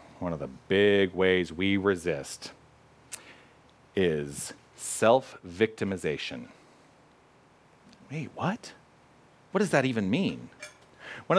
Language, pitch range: English, 110-185 Hz